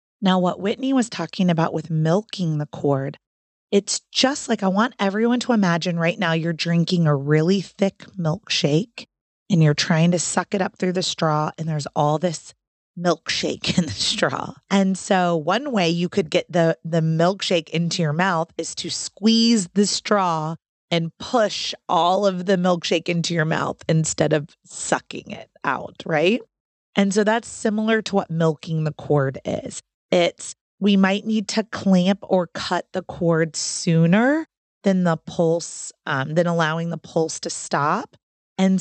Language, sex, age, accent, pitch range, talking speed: English, female, 30-49, American, 160-195 Hz, 170 wpm